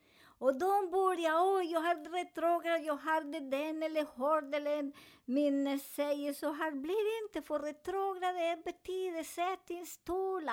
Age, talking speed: 50-69, 170 wpm